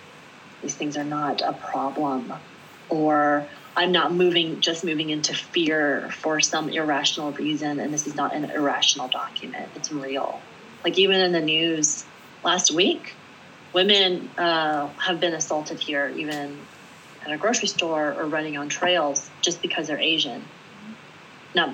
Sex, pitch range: female, 145-175 Hz